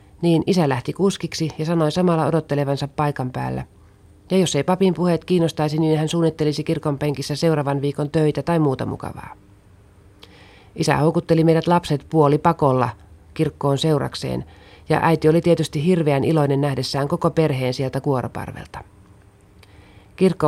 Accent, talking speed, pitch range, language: native, 140 wpm, 120-165 Hz, Finnish